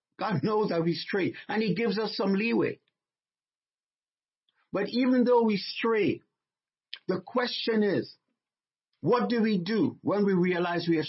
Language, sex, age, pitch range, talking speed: English, male, 50-69, 170-225 Hz, 150 wpm